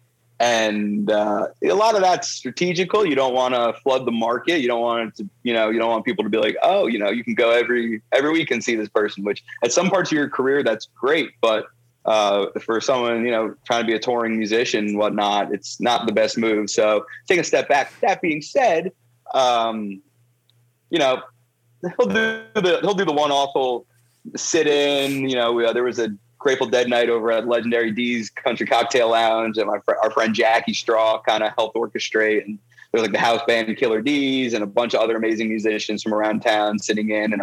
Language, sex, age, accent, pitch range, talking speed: English, male, 30-49, American, 110-125 Hz, 220 wpm